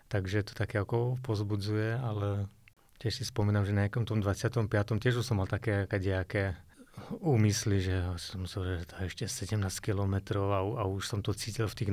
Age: 30-49